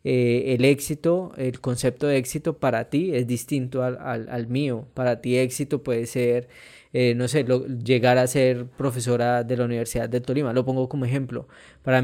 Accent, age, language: Colombian, 20-39, Spanish